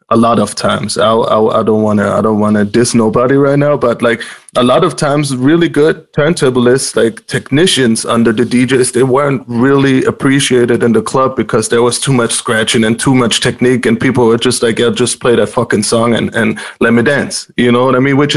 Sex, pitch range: male, 115-135 Hz